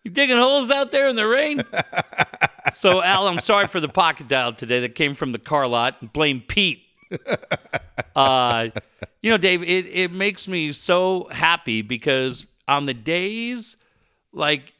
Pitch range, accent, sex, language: 120-170 Hz, American, male, English